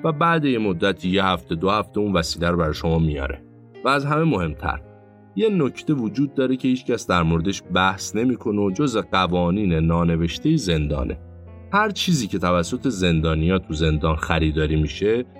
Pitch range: 85-115 Hz